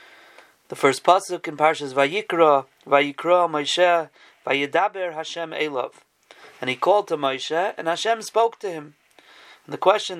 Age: 30-49